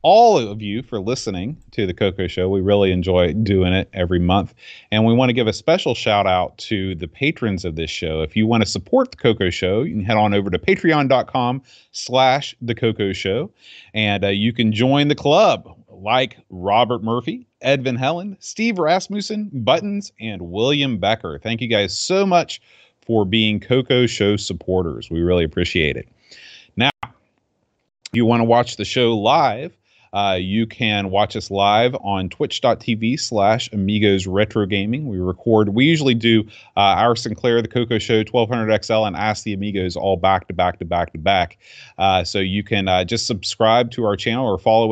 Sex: male